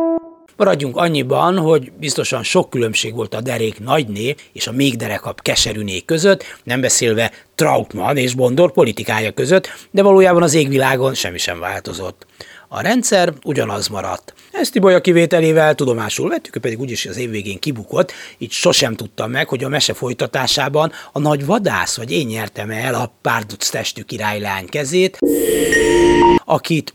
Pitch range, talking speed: 110-150 Hz, 150 wpm